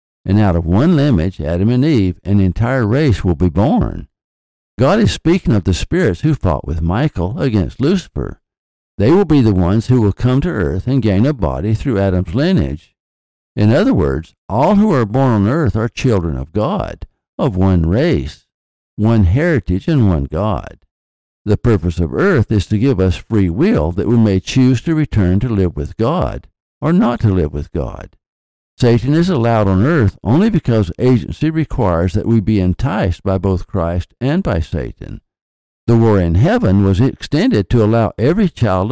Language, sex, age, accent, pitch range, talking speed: English, male, 60-79, American, 90-120 Hz, 185 wpm